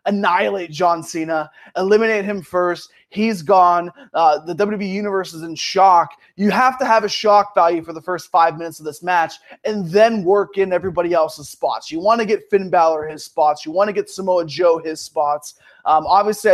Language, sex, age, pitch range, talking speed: English, male, 20-39, 165-200 Hz, 200 wpm